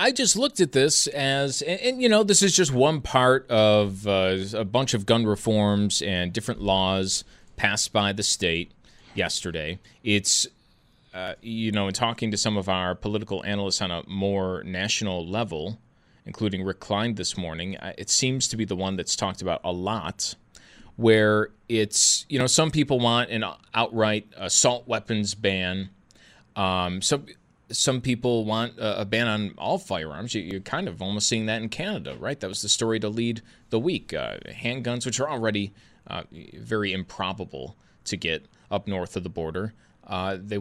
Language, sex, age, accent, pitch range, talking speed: English, male, 30-49, American, 100-125 Hz, 170 wpm